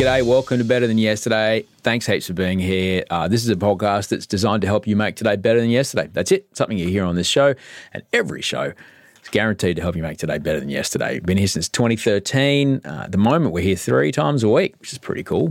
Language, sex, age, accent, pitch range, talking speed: English, male, 30-49, Australian, 90-120 Hz, 245 wpm